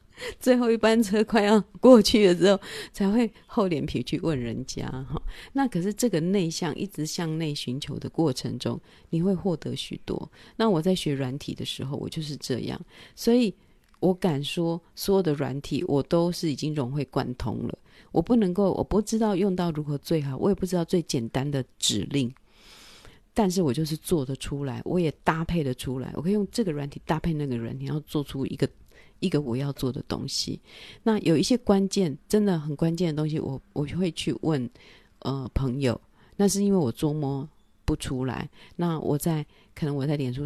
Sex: female